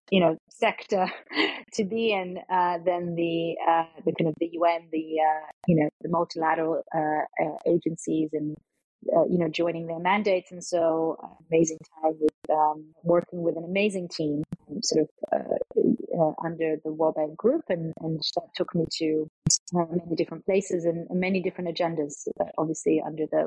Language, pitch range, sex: English, 165-190 Hz, female